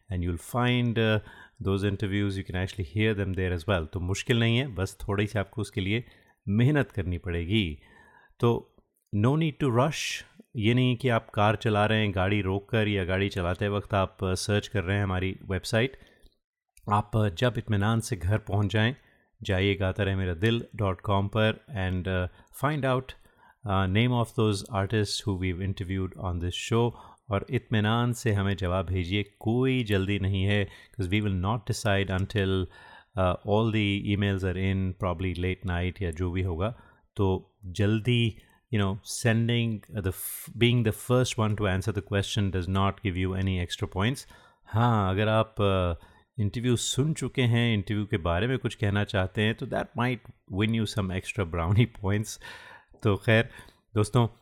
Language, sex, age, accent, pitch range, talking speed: Hindi, male, 30-49, native, 95-115 Hz, 175 wpm